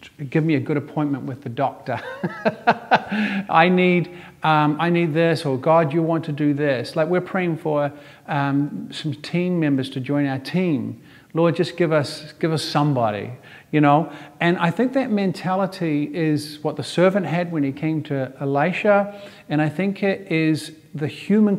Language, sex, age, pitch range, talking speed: English, male, 50-69, 145-175 Hz, 180 wpm